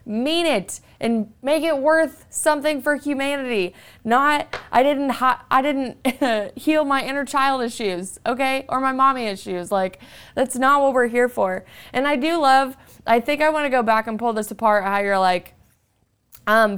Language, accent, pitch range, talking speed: English, American, 200-270 Hz, 180 wpm